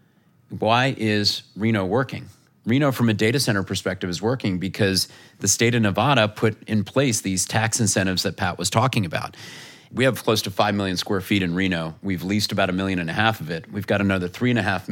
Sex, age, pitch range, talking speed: male, 30-49, 95-115 Hz, 210 wpm